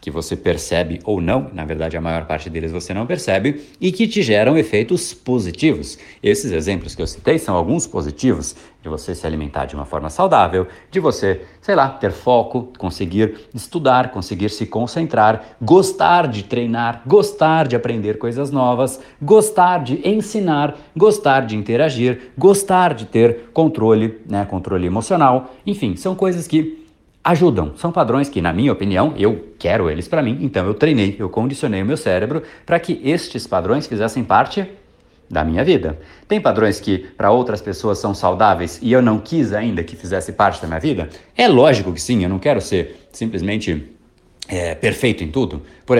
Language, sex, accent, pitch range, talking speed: Portuguese, male, Brazilian, 100-155 Hz, 175 wpm